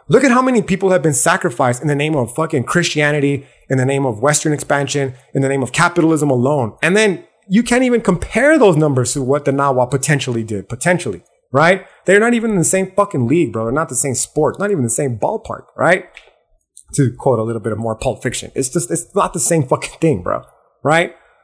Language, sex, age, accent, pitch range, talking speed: English, male, 30-49, American, 135-170 Hz, 225 wpm